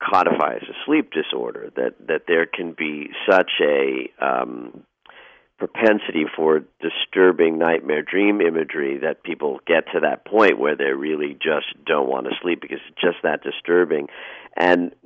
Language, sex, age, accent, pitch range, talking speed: English, male, 50-69, American, 95-155 Hz, 150 wpm